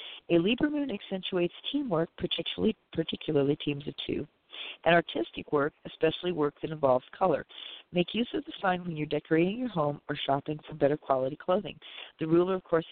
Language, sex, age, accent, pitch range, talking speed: English, female, 50-69, American, 150-190 Hz, 175 wpm